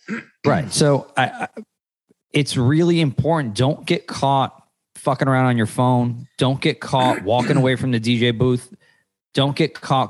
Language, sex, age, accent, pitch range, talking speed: English, male, 30-49, American, 115-145 Hz, 160 wpm